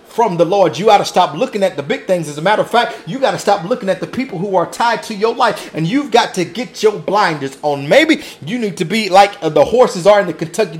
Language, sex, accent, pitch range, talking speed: English, male, American, 185-245 Hz, 285 wpm